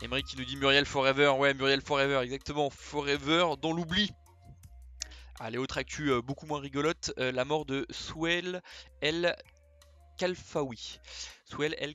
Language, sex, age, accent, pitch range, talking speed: French, male, 20-39, French, 120-140 Hz, 150 wpm